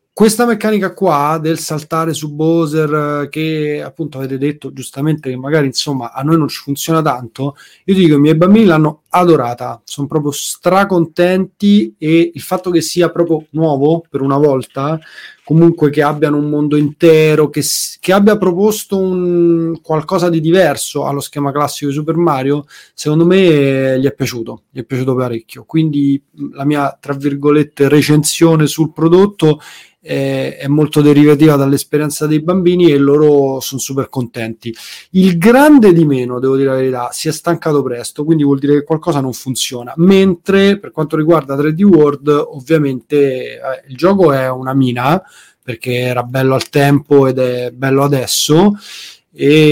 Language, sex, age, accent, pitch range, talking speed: Italian, male, 30-49, native, 135-165 Hz, 160 wpm